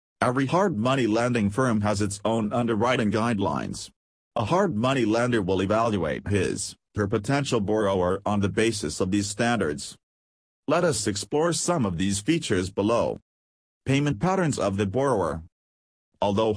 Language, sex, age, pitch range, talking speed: English, male, 40-59, 95-120 Hz, 145 wpm